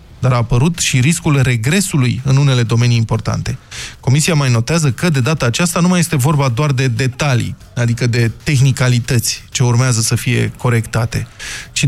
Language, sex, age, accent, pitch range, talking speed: Romanian, male, 20-39, native, 120-160 Hz, 165 wpm